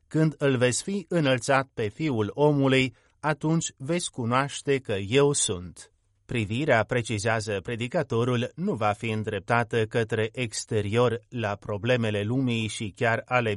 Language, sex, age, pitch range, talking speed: Romanian, male, 30-49, 110-140 Hz, 130 wpm